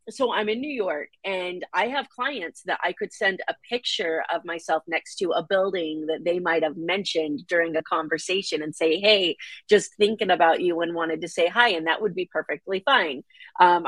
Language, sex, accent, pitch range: English, female, American, 165-225 Hz